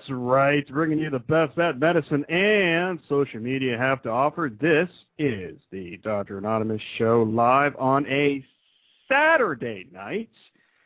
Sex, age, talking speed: male, 50-69, 140 wpm